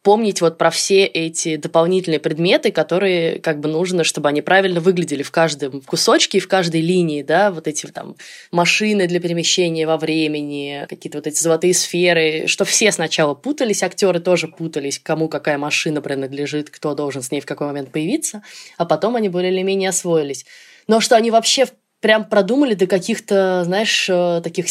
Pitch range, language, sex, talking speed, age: 150-185 Hz, Russian, female, 170 wpm, 20-39